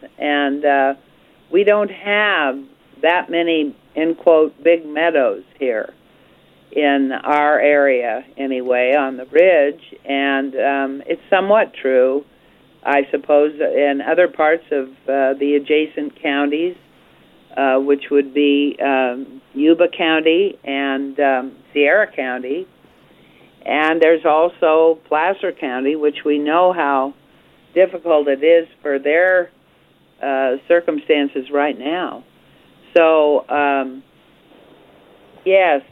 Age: 50-69